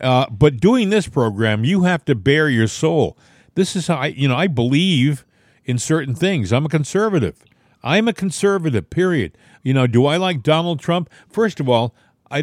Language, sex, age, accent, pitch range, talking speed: English, male, 50-69, American, 125-180 Hz, 190 wpm